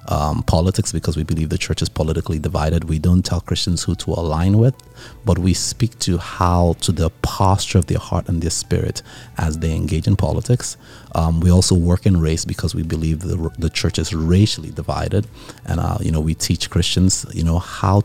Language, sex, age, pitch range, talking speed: English, male, 30-49, 85-105 Hz, 205 wpm